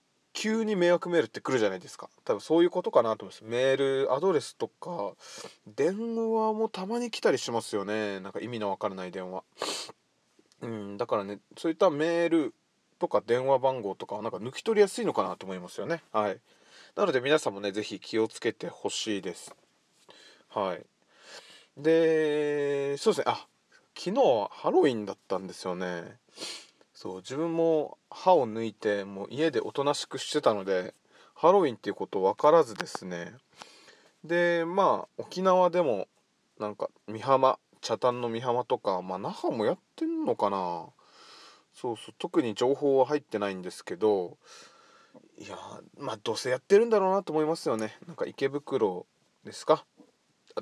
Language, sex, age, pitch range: Japanese, male, 20-39, 110-170 Hz